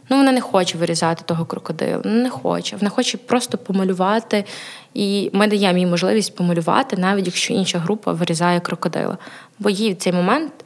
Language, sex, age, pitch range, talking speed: Ukrainian, female, 20-39, 180-205 Hz, 170 wpm